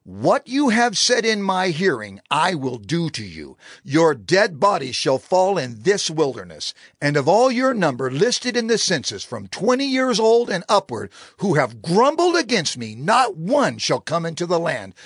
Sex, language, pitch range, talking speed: male, English, 140-210 Hz, 185 wpm